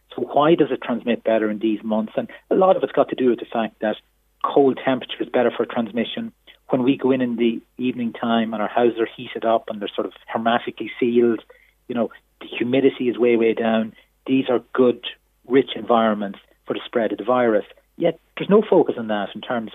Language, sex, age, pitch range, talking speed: English, male, 30-49, 110-130 Hz, 220 wpm